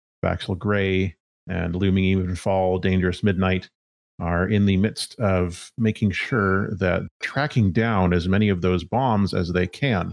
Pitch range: 90-110 Hz